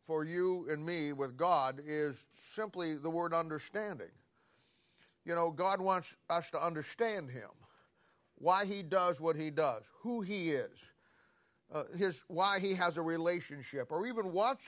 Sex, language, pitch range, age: male, English, 145-190 Hz, 50-69